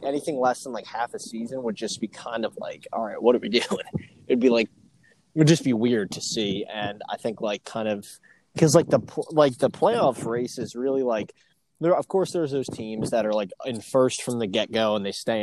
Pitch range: 110-135 Hz